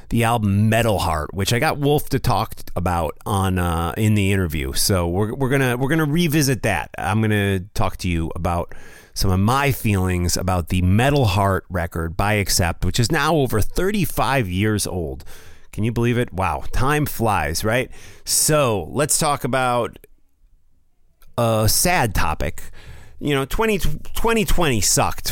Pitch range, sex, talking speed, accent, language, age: 90-125 Hz, male, 160 wpm, American, English, 30-49